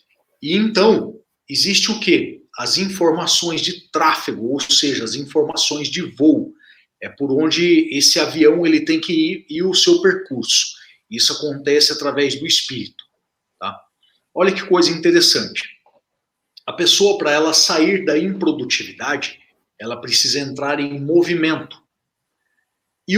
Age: 40-59